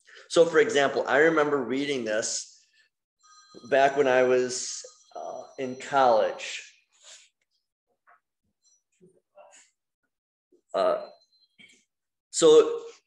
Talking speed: 75 wpm